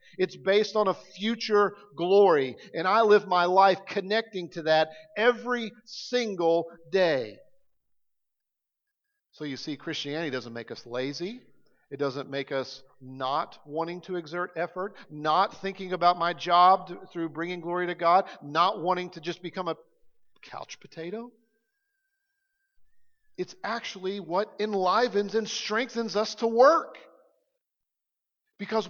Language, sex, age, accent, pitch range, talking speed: English, male, 50-69, American, 145-225 Hz, 130 wpm